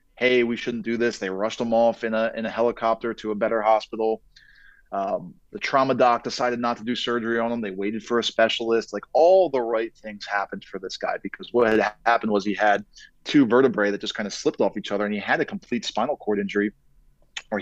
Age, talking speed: 20-39, 235 wpm